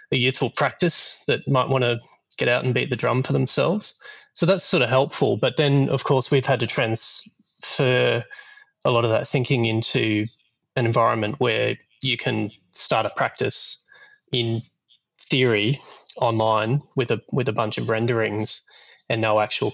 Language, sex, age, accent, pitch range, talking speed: English, male, 20-39, Australian, 110-135 Hz, 165 wpm